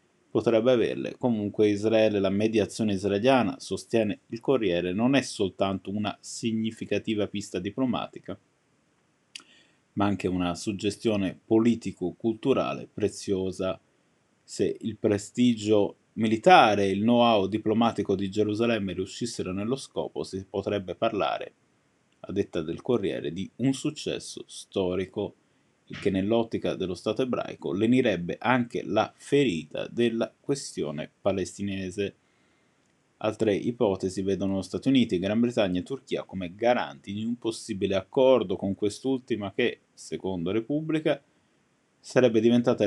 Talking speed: 115 wpm